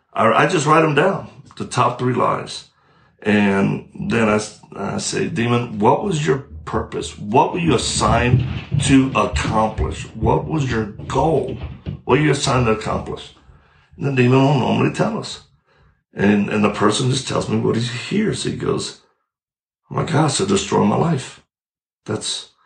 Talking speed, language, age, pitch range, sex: 165 wpm, English, 60-79, 110-145 Hz, male